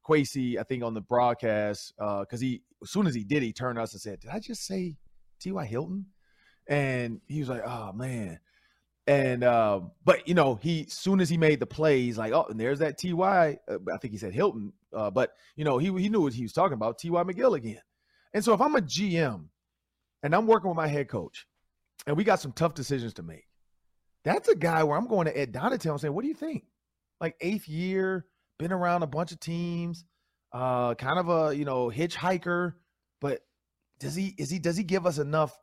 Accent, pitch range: American, 125-185 Hz